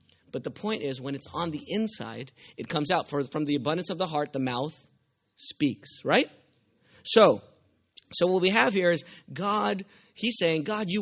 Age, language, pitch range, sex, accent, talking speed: 30-49, English, 150-220 Hz, male, American, 190 wpm